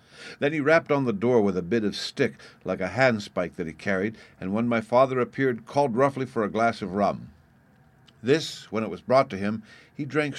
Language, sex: English, male